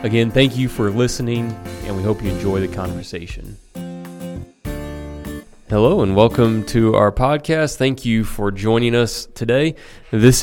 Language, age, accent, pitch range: English, 20-39, American, 100-120 Hz